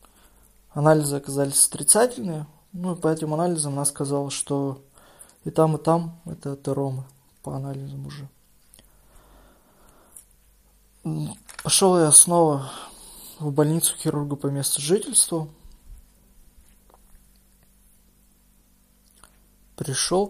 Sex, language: male, Russian